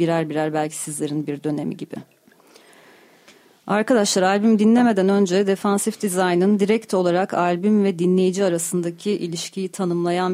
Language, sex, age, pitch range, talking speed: Turkish, female, 40-59, 165-195 Hz, 120 wpm